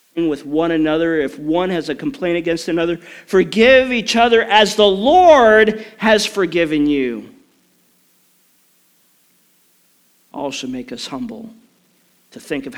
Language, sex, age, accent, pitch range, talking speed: English, male, 40-59, American, 140-200 Hz, 125 wpm